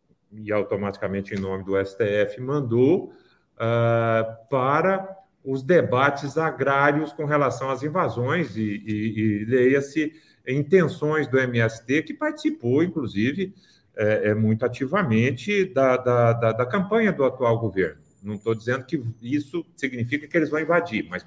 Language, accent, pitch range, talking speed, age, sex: Portuguese, Brazilian, 125-190 Hz, 140 wpm, 40-59, male